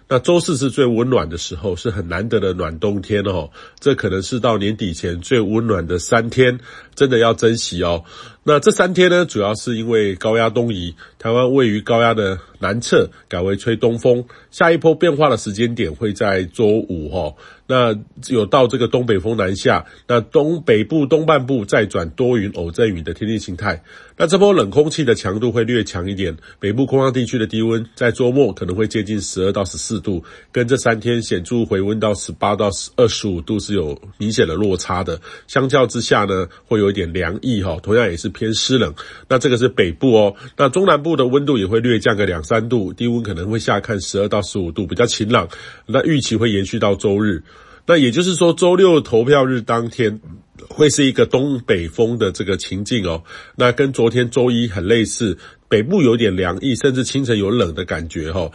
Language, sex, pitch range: Chinese, male, 100-125 Hz